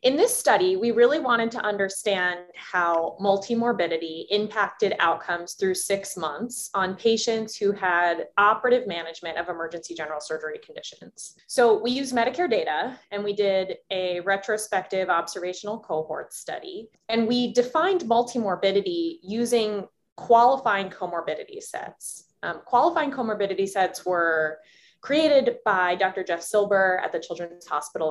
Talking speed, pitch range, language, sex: 130 wpm, 175-235 Hz, English, female